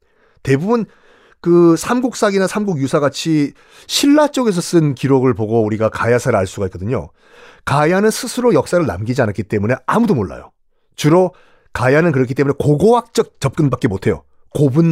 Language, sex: Korean, male